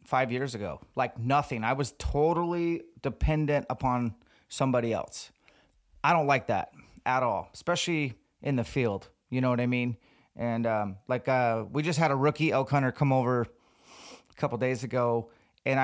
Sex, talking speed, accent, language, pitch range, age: male, 175 wpm, American, English, 120-145 Hz, 30-49